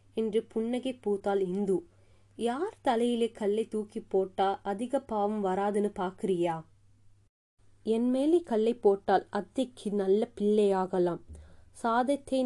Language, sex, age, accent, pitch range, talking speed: Tamil, female, 20-39, native, 185-225 Hz, 100 wpm